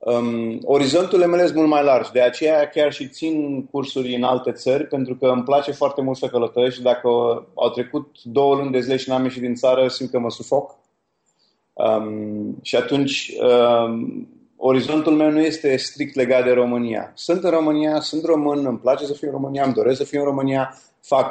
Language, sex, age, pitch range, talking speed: Romanian, male, 30-49, 125-155 Hz, 200 wpm